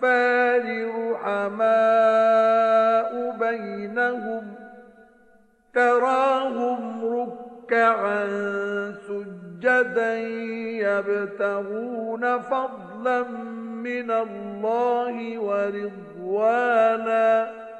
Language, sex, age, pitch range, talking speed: Arabic, male, 50-69, 225-250 Hz, 35 wpm